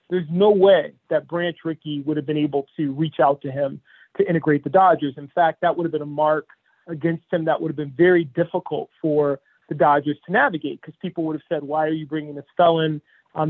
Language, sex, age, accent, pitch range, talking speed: English, male, 40-59, American, 150-175 Hz, 230 wpm